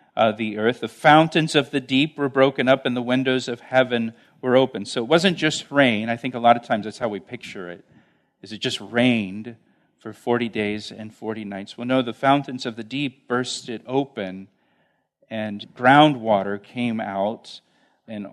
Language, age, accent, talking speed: English, 40-59, American, 195 wpm